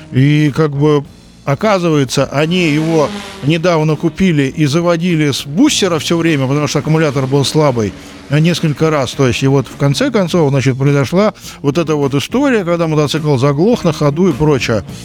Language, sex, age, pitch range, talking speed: Russian, male, 50-69, 140-185 Hz, 165 wpm